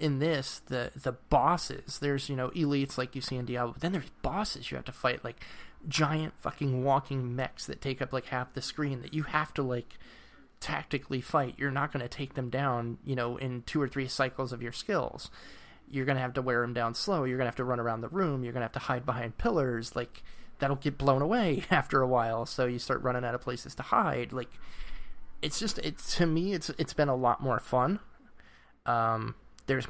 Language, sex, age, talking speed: English, male, 20-39, 235 wpm